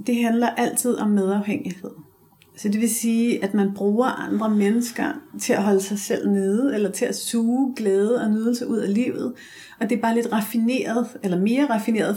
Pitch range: 200-235 Hz